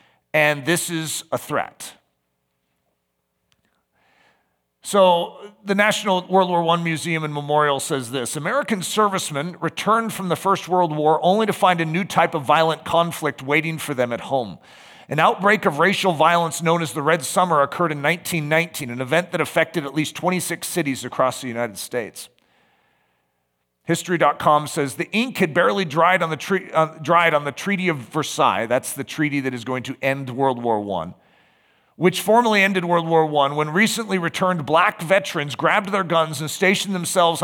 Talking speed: 175 wpm